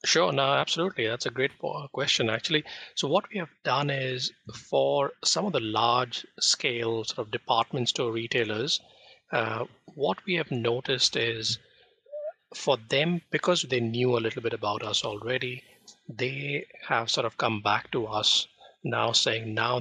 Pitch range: 110-140 Hz